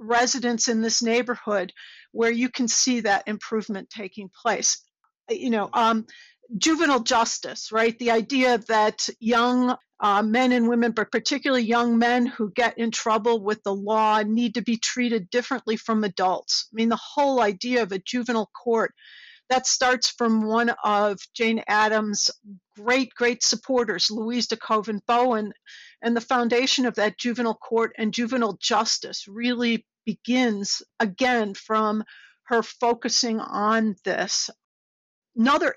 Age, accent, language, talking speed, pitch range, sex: 50-69, American, English, 145 wpm, 215-245 Hz, female